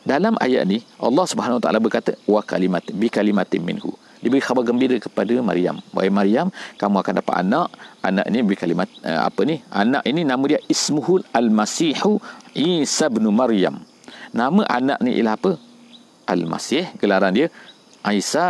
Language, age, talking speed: English, 50-69, 150 wpm